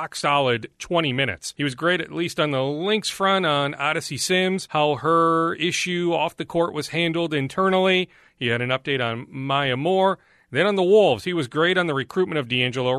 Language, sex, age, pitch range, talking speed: English, male, 40-59, 130-170 Hz, 200 wpm